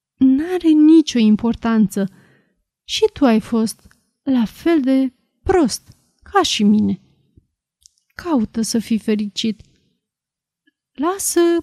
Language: Romanian